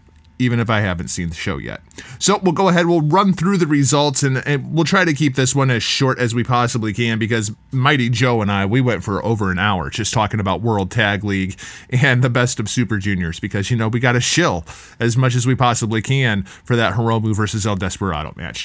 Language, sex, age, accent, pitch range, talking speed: English, male, 30-49, American, 115-180 Hz, 240 wpm